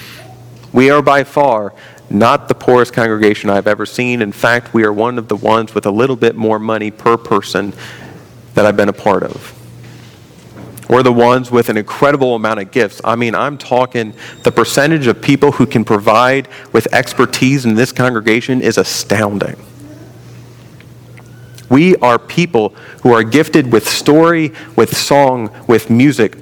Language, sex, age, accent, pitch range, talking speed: English, male, 40-59, American, 115-135 Hz, 165 wpm